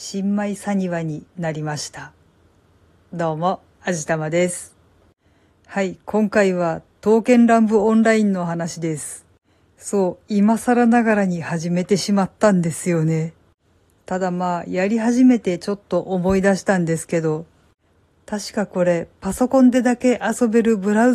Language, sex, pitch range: Japanese, female, 175-230 Hz